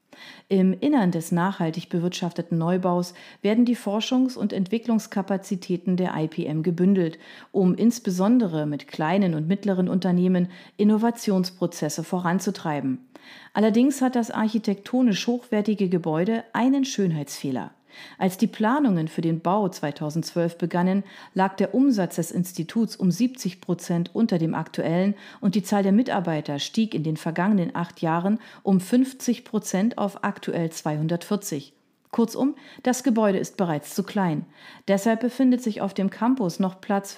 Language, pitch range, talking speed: German, 175-220 Hz, 130 wpm